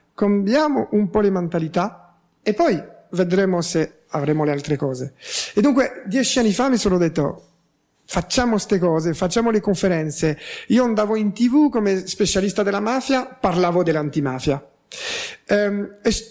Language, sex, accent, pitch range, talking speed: Italian, male, native, 165-215 Hz, 140 wpm